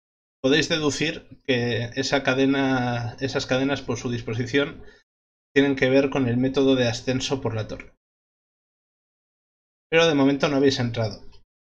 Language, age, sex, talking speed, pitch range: English, 20-39, male, 135 wpm, 115-135 Hz